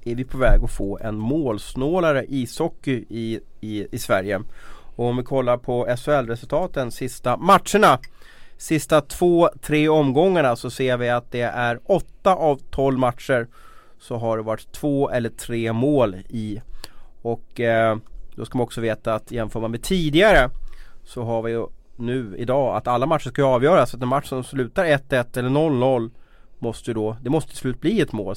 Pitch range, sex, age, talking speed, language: 115-135 Hz, male, 30-49, 175 wpm, Swedish